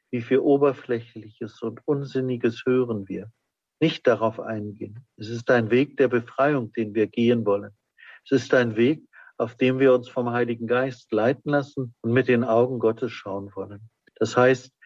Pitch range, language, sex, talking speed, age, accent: 115-135 Hz, German, male, 170 wpm, 50-69, German